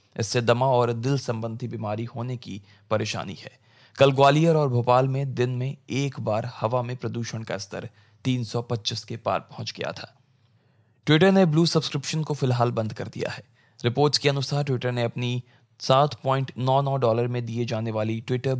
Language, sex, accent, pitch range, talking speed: Hindi, male, native, 115-135 Hz, 170 wpm